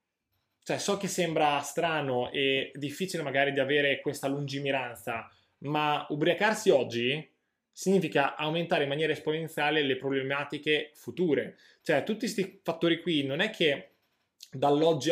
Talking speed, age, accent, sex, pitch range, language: 125 wpm, 20-39, native, male, 135-170 Hz, Italian